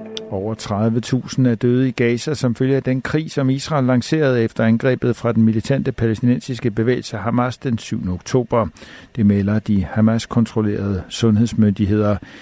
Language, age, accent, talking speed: Danish, 60-79, native, 145 wpm